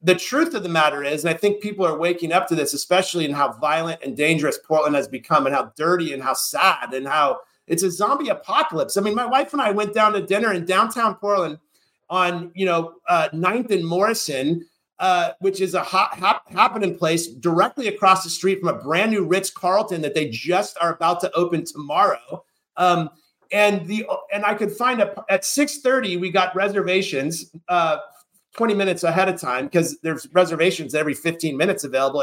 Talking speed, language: 205 wpm, English